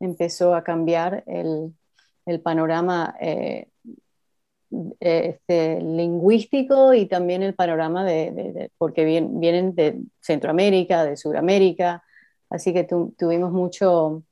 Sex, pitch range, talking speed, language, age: female, 175-210 Hz, 115 wpm, Spanish, 30-49